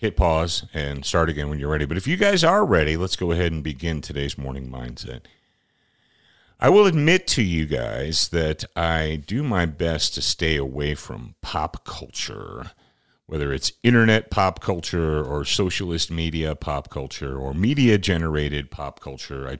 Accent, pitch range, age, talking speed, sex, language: American, 75-105 Hz, 50-69, 165 wpm, male, English